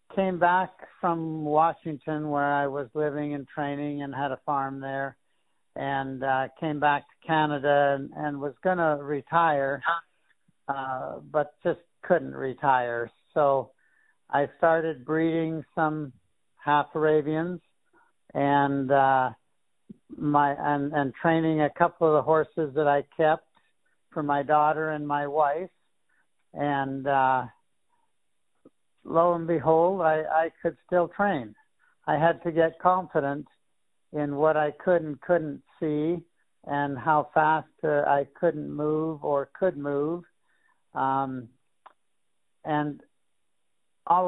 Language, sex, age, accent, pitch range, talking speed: English, male, 60-79, American, 140-160 Hz, 125 wpm